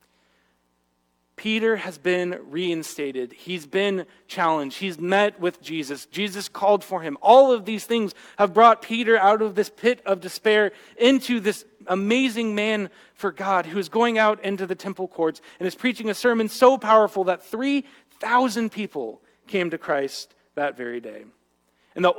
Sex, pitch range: male, 145-210 Hz